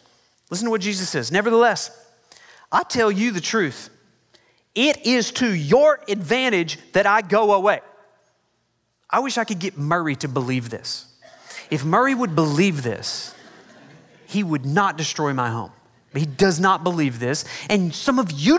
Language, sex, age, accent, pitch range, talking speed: English, male, 30-49, American, 155-225 Hz, 160 wpm